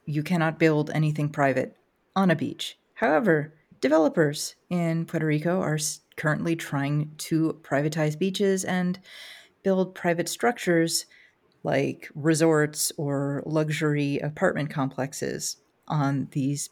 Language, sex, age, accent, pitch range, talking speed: English, female, 30-49, American, 155-190 Hz, 110 wpm